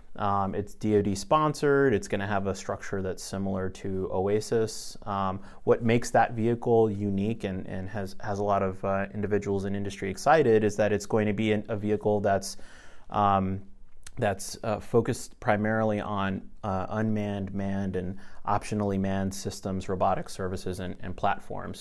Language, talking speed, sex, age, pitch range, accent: English, 170 wpm, male, 30-49, 95-110 Hz, American